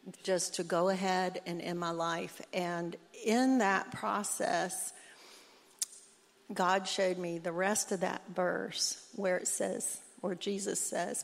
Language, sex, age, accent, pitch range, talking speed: English, female, 60-79, American, 185-225 Hz, 140 wpm